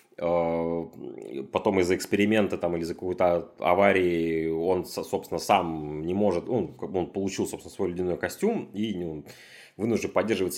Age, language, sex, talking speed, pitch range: 30-49, Russian, male, 130 wpm, 85-105 Hz